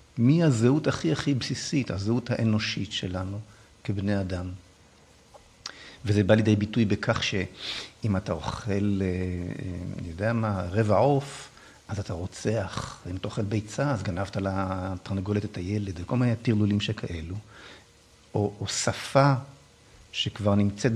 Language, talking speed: Hebrew, 125 wpm